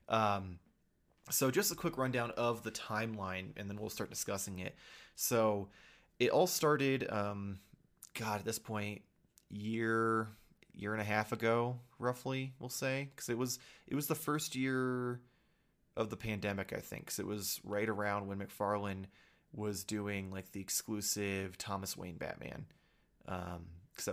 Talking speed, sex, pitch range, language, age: 155 wpm, male, 100-115 Hz, English, 20-39